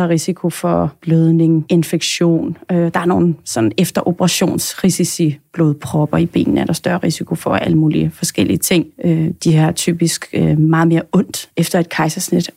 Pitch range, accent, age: 170-200 Hz, native, 30-49